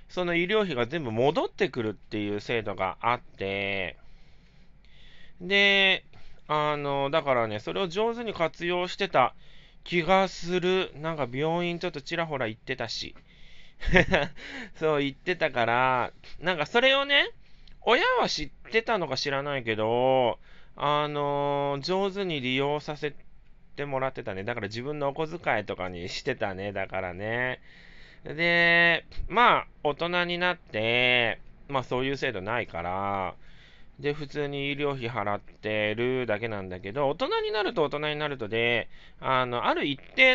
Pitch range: 115-175 Hz